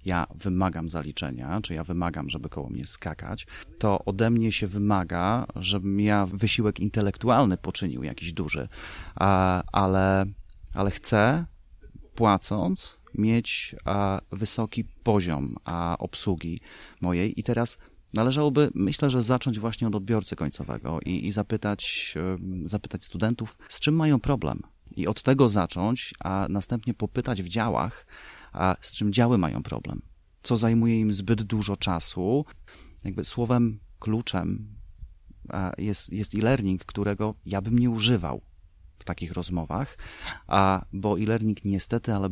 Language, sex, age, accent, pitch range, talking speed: Polish, male, 30-49, native, 95-110 Hz, 130 wpm